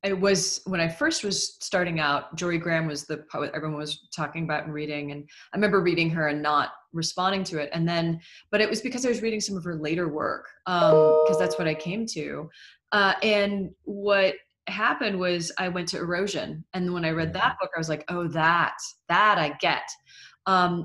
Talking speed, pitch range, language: 215 wpm, 155-190 Hz, English